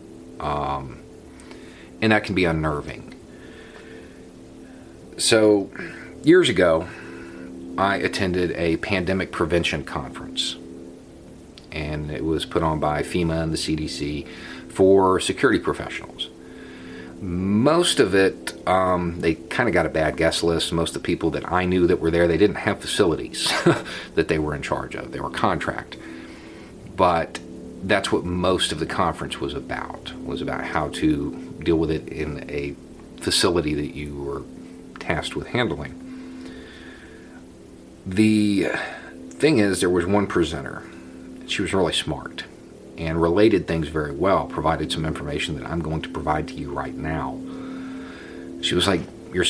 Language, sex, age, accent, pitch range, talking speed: English, male, 40-59, American, 75-90 Hz, 145 wpm